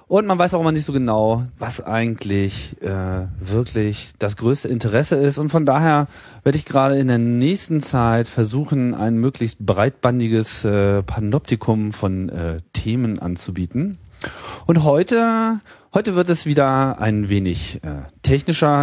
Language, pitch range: German, 100-135 Hz